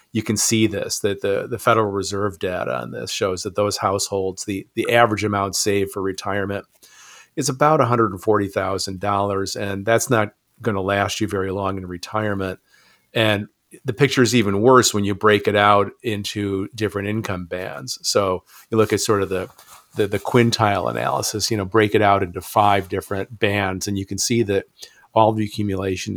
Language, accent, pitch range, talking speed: English, American, 95-110 Hz, 195 wpm